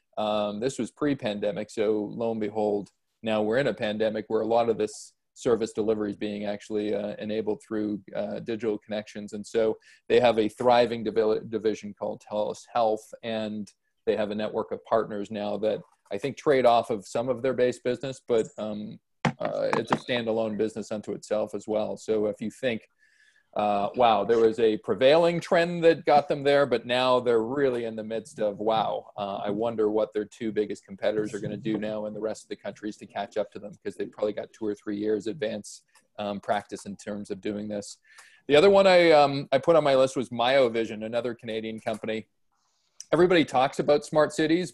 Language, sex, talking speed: English, male, 210 wpm